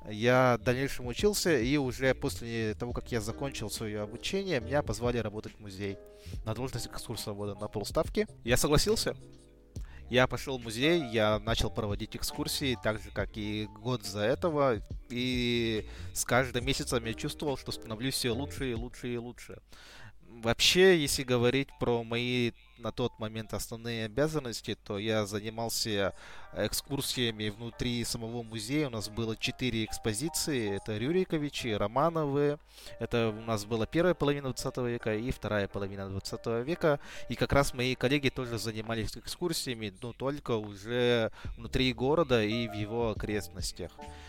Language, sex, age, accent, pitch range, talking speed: Russian, male, 20-39, native, 110-135 Hz, 150 wpm